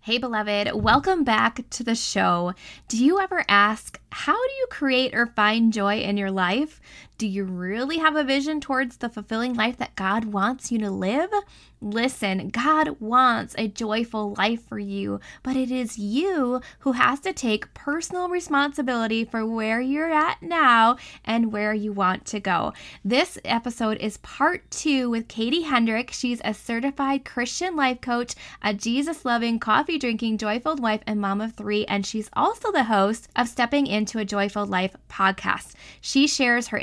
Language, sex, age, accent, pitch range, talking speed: English, female, 10-29, American, 210-270 Hz, 170 wpm